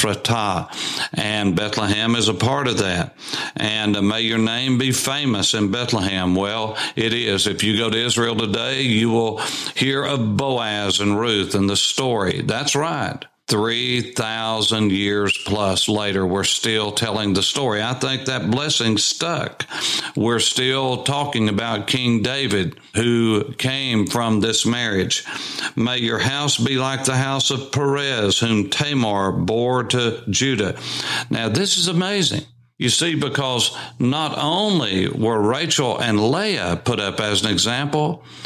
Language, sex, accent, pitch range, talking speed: English, male, American, 110-140 Hz, 145 wpm